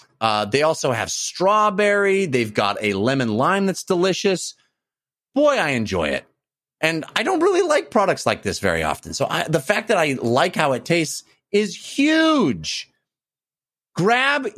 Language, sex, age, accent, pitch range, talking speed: English, male, 30-49, American, 145-215 Hz, 150 wpm